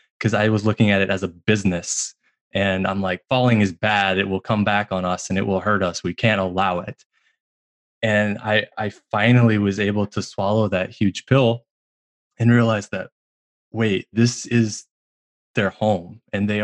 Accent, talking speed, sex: American, 185 wpm, male